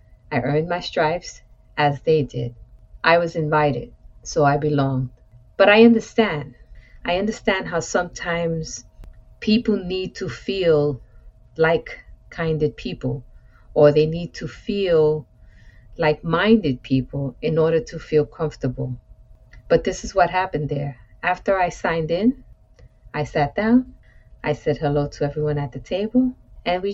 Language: English